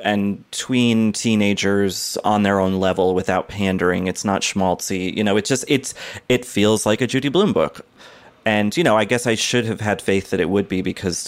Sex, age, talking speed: male, 30-49, 205 wpm